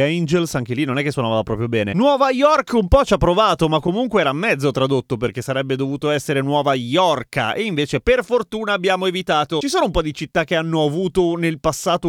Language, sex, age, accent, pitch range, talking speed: Italian, male, 30-49, native, 145-205 Hz, 220 wpm